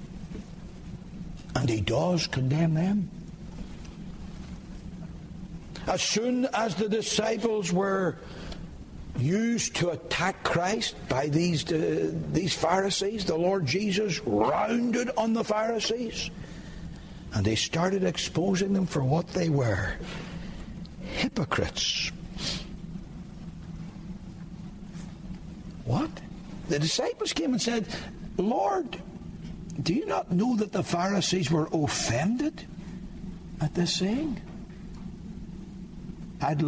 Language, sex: English, male